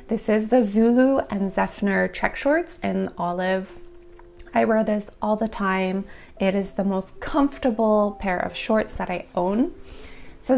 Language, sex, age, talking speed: English, female, 20-39, 160 wpm